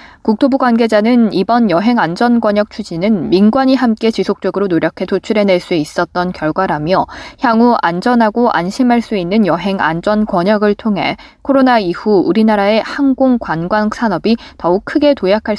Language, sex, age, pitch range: Korean, female, 20-39, 180-240 Hz